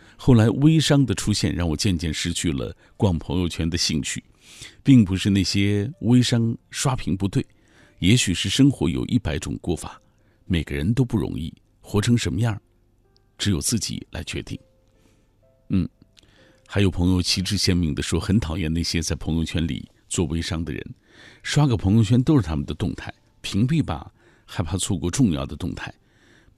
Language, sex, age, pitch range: Chinese, male, 50-69, 90-115 Hz